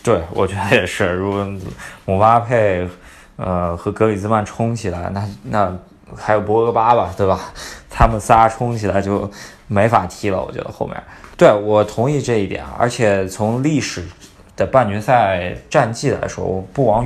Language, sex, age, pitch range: Chinese, male, 20-39, 95-115 Hz